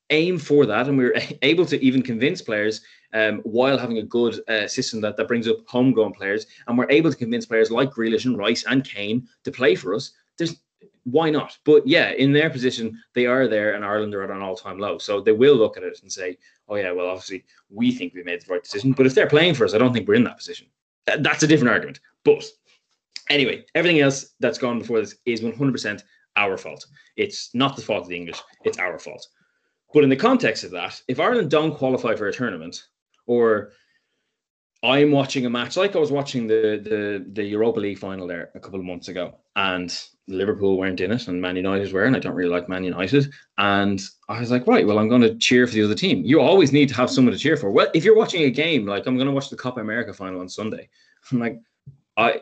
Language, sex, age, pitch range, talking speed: English, male, 20-39, 105-150 Hz, 235 wpm